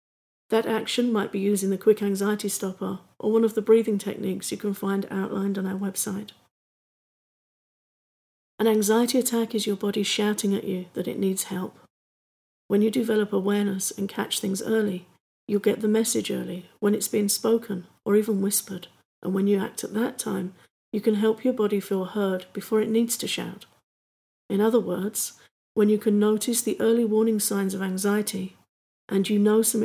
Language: English